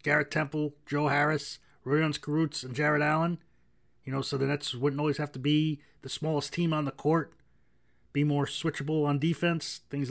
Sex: male